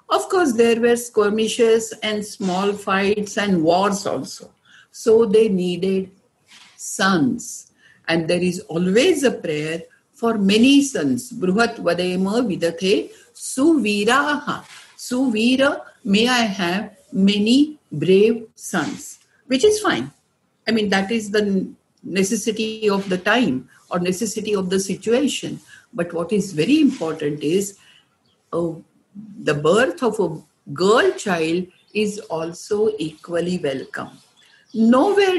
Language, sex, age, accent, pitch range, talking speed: English, female, 60-79, Indian, 185-235 Hz, 115 wpm